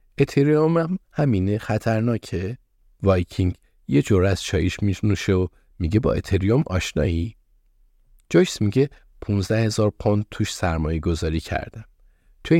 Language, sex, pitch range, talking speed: Persian, male, 90-110 Hz, 120 wpm